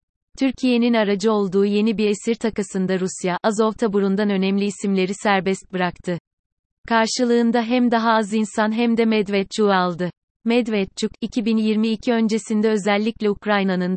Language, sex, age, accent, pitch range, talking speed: Turkish, female, 30-49, native, 190-225 Hz, 120 wpm